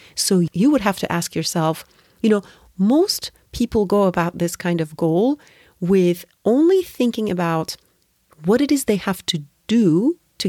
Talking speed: 165 wpm